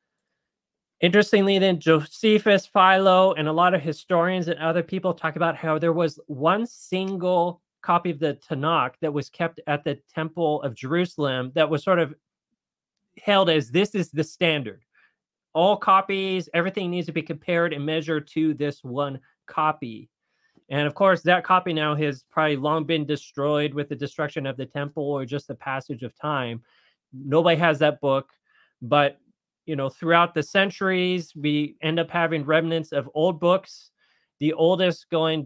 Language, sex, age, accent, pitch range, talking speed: English, male, 30-49, American, 140-175 Hz, 165 wpm